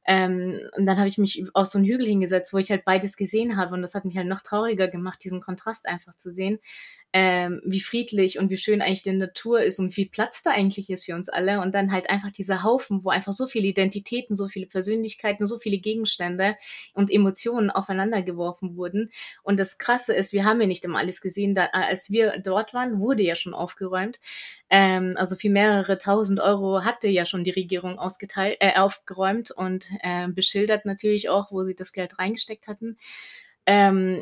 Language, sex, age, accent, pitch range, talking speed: German, female, 20-39, German, 185-205 Hz, 205 wpm